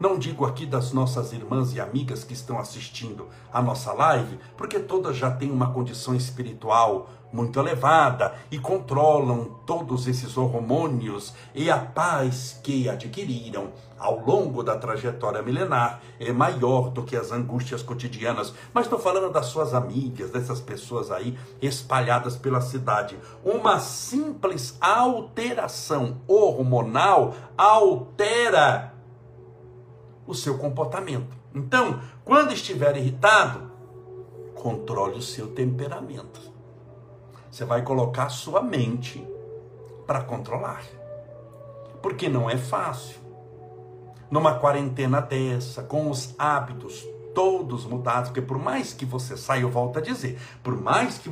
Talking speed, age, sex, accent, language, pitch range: 125 wpm, 60-79, male, Brazilian, Portuguese, 120-140 Hz